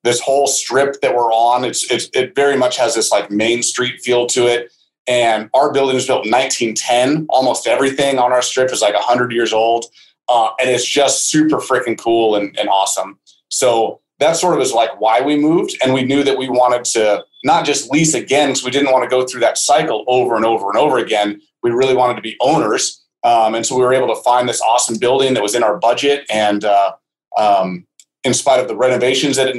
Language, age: English, 30-49